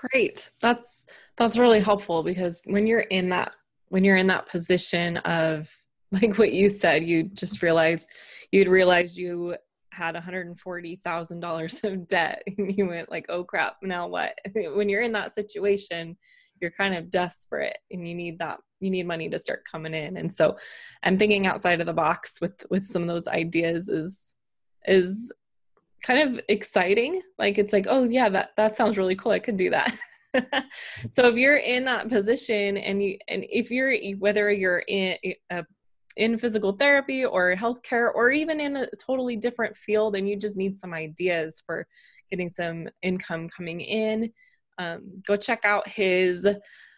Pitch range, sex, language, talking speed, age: 175-220 Hz, female, English, 170 wpm, 20-39